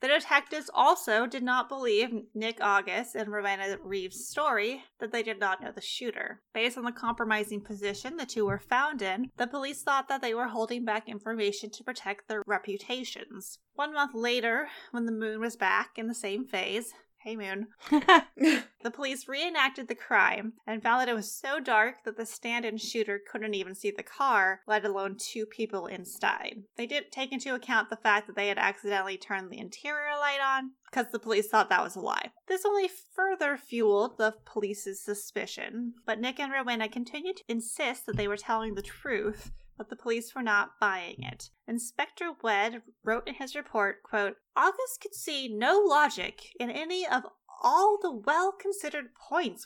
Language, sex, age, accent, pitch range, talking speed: English, female, 20-39, American, 215-285 Hz, 185 wpm